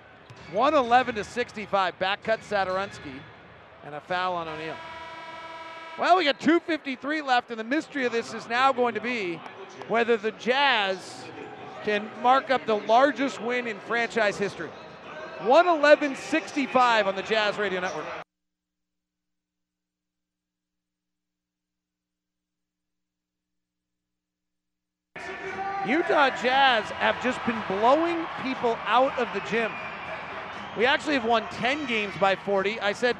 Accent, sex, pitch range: American, male, 190-275 Hz